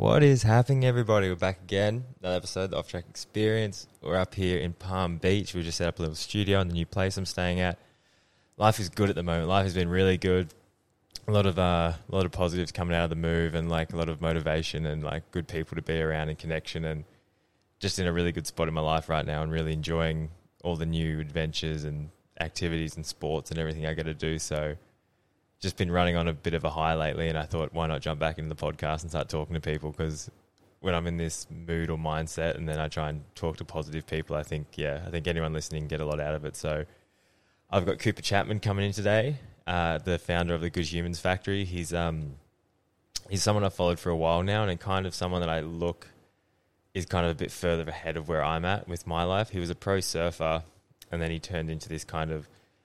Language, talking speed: English, 245 wpm